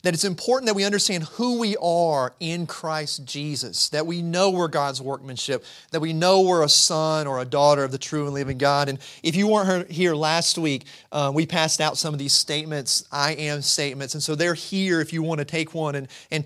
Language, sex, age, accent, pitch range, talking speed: English, male, 30-49, American, 145-180 Hz, 230 wpm